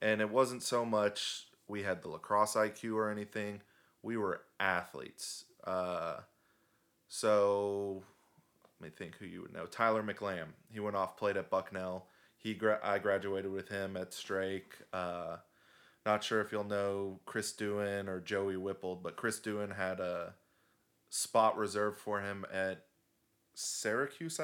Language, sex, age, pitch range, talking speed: English, male, 20-39, 95-105 Hz, 150 wpm